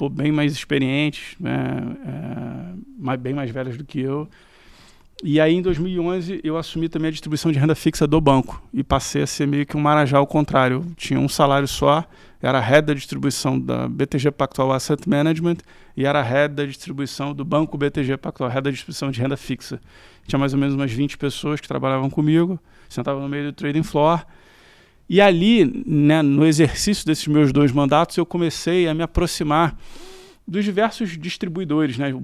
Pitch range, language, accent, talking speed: 140-165 Hz, Portuguese, Brazilian, 180 wpm